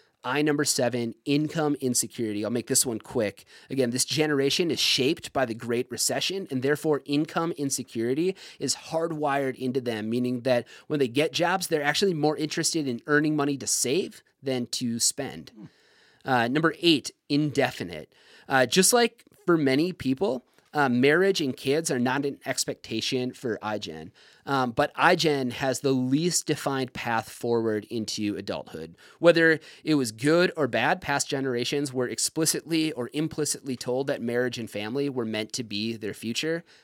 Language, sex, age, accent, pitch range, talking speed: English, male, 30-49, American, 120-150 Hz, 160 wpm